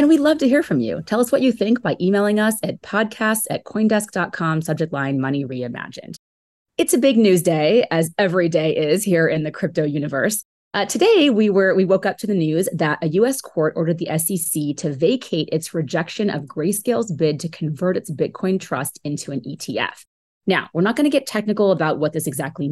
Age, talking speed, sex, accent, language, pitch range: 30-49, 210 wpm, female, American, English, 155-205 Hz